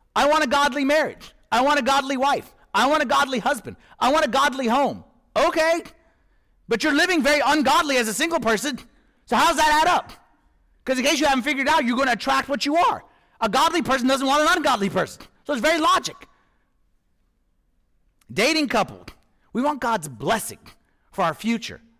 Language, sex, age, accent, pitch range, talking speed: English, male, 40-59, American, 215-295 Hz, 195 wpm